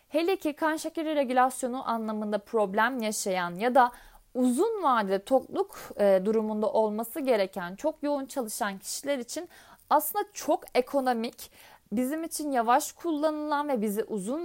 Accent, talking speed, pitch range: native, 130 wpm, 215-310 Hz